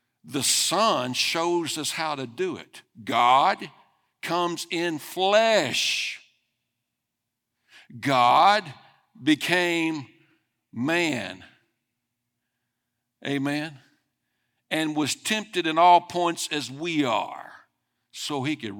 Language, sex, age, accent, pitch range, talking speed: English, male, 60-79, American, 120-175 Hz, 90 wpm